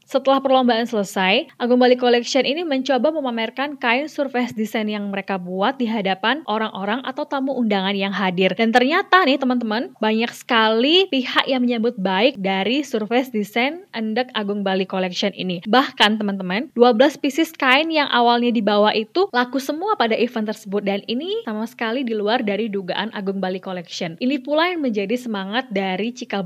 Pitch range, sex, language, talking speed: 200-255 Hz, female, Indonesian, 165 wpm